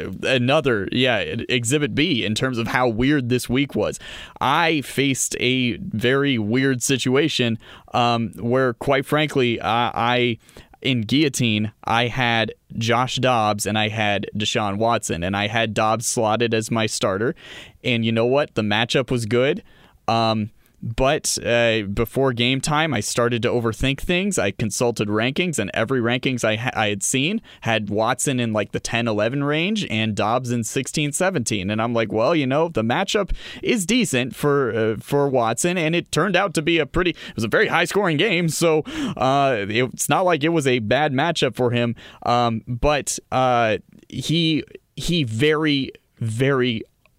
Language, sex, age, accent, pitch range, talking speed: English, male, 20-39, American, 115-150 Hz, 165 wpm